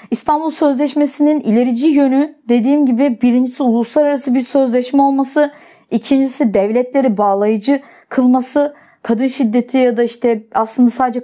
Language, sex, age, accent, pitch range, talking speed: Turkish, female, 30-49, native, 220-275 Hz, 120 wpm